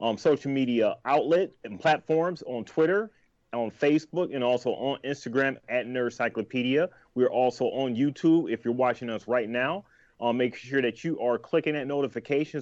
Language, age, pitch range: English, 30-49, 120-155 Hz